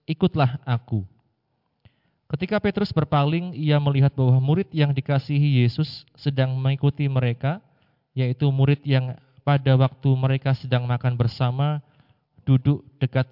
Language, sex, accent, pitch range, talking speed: Indonesian, male, native, 120-140 Hz, 115 wpm